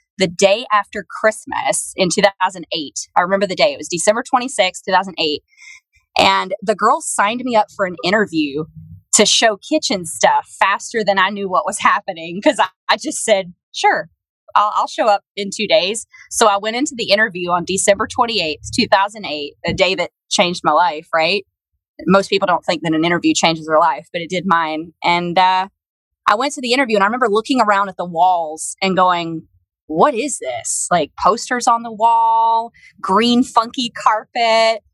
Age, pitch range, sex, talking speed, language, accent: 20-39, 175-220 Hz, female, 185 wpm, English, American